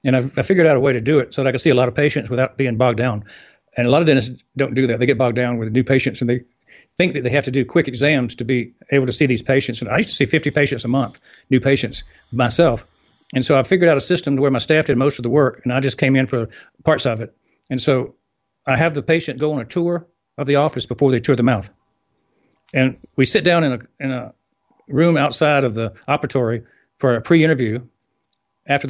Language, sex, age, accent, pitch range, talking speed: English, male, 60-79, American, 125-150 Hz, 260 wpm